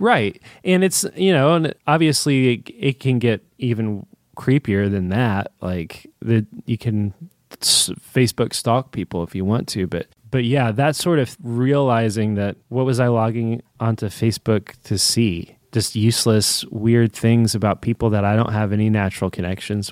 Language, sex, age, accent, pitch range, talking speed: English, male, 20-39, American, 105-125 Hz, 165 wpm